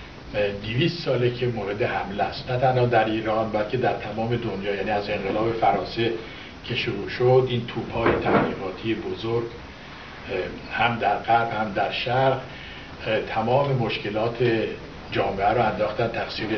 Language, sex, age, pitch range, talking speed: Persian, male, 60-79, 105-125 Hz, 130 wpm